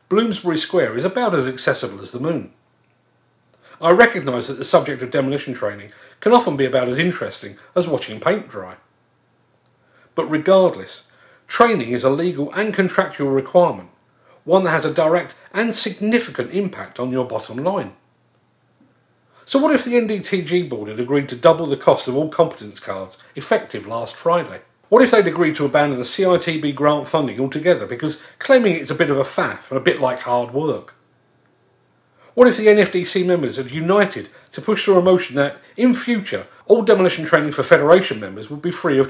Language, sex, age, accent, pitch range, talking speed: English, male, 40-59, British, 135-190 Hz, 180 wpm